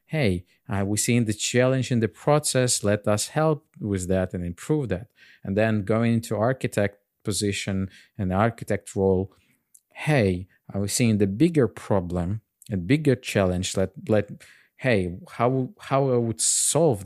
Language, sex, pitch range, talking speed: English, male, 100-120 Hz, 155 wpm